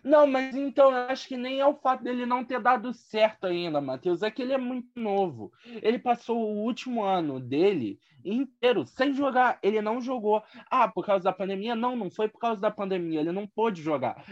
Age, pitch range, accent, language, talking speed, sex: 20-39, 165-250 Hz, Brazilian, Portuguese, 215 wpm, male